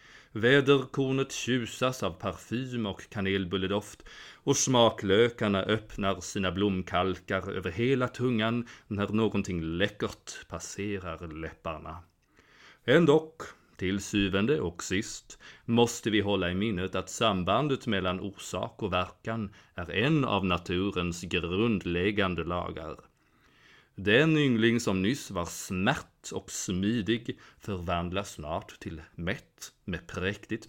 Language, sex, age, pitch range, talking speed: Swedish, male, 30-49, 90-110 Hz, 110 wpm